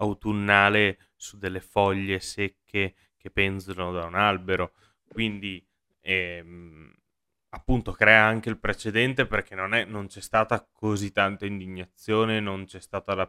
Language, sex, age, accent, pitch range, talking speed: Italian, male, 20-39, native, 95-105 Hz, 130 wpm